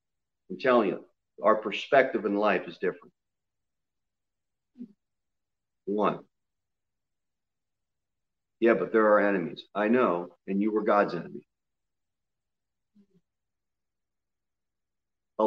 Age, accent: 40-59, American